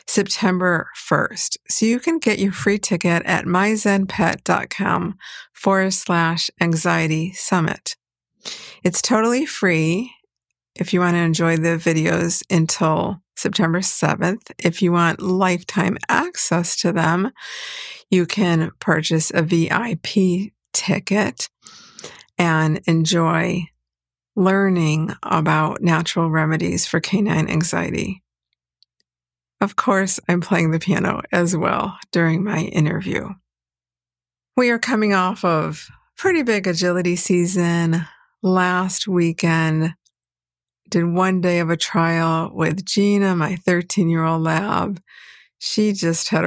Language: English